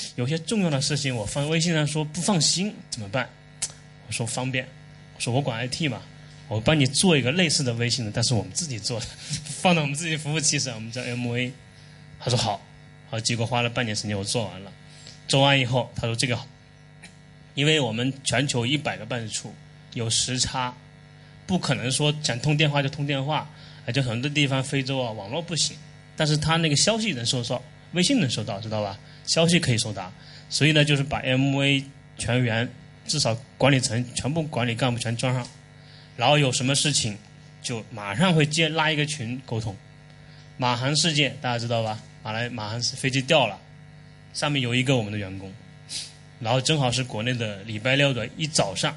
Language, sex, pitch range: Chinese, male, 120-150 Hz